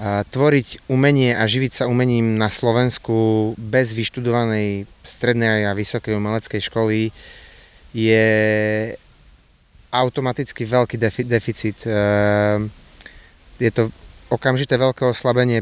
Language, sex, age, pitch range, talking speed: Slovak, male, 30-49, 110-125 Hz, 95 wpm